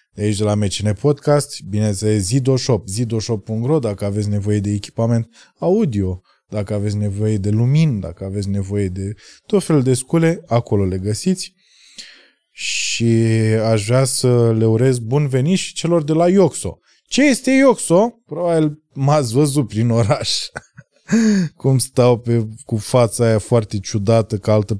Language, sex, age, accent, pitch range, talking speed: Romanian, male, 20-39, native, 105-155 Hz, 150 wpm